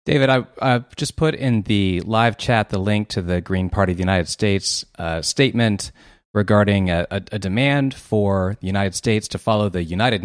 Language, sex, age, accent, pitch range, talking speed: English, male, 30-49, American, 90-115 Hz, 200 wpm